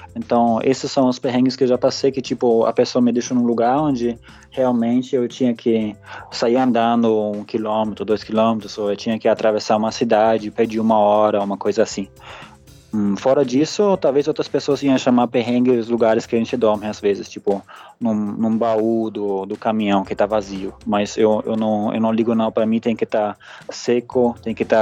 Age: 20-39